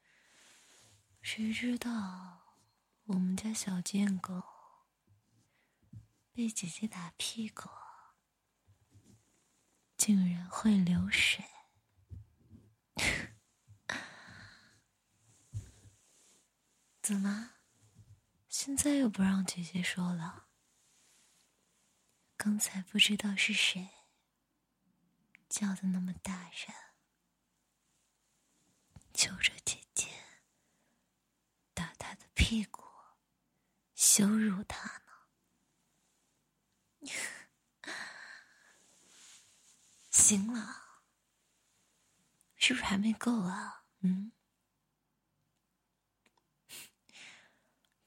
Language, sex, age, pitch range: Chinese, female, 20-39, 140-220 Hz